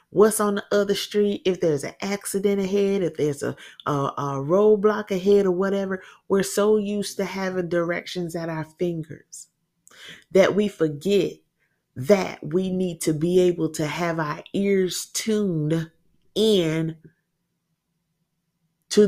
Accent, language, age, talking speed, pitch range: American, English, 30-49, 135 wpm, 165-200 Hz